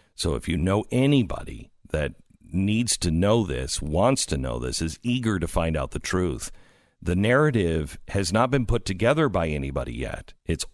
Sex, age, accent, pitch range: male, 50-69, American, 90-140 Hz